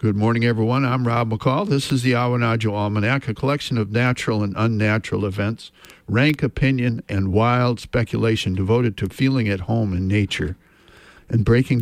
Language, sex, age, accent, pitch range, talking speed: English, male, 60-79, American, 105-135 Hz, 165 wpm